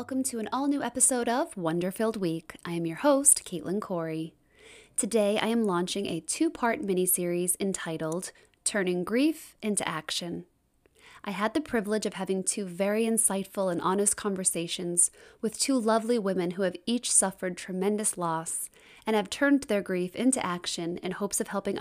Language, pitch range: English, 180-220 Hz